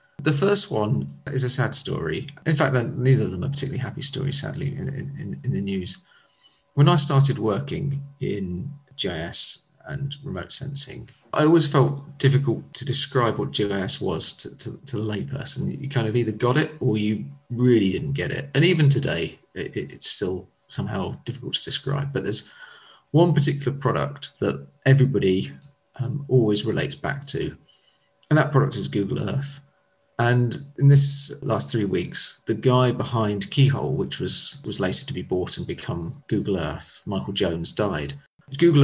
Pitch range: 115-145 Hz